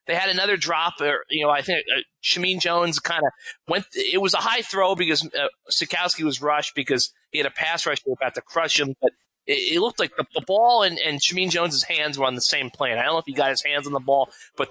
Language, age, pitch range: English, 30-49, 145-200 Hz